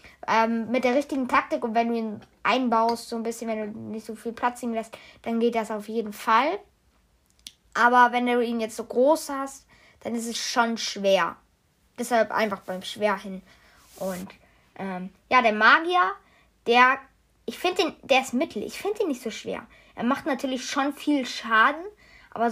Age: 20-39